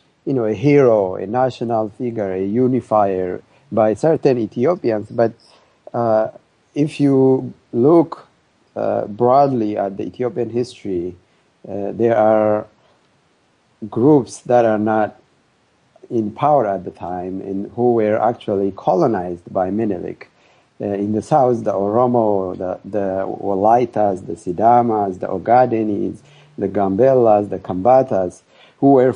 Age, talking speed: 50-69, 125 wpm